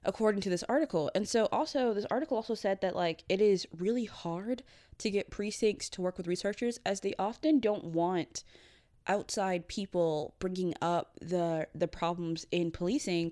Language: English